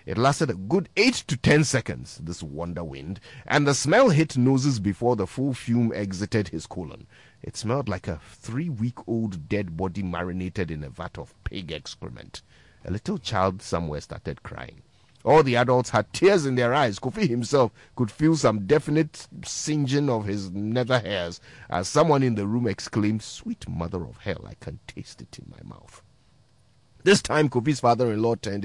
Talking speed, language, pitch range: 175 wpm, English, 95-140 Hz